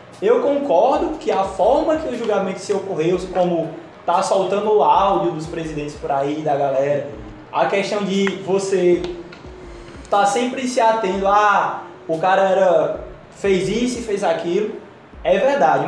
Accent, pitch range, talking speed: Brazilian, 185-235 Hz, 150 wpm